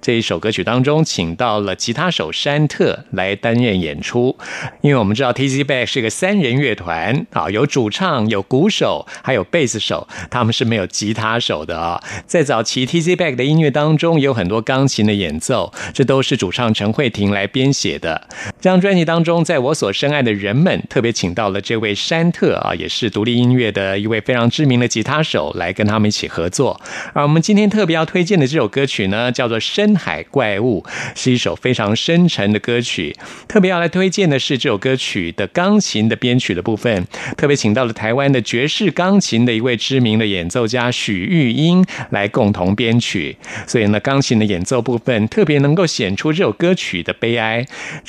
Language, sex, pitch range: Chinese, male, 110-150 Hz